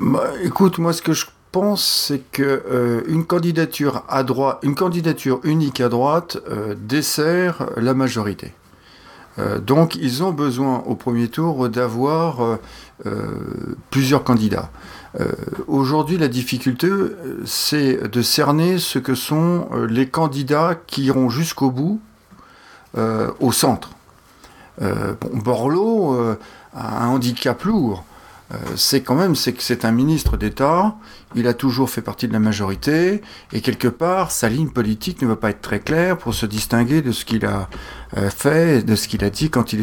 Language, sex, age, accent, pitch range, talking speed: French, male, 50-69, French, 115-155 Hz, 160 wpm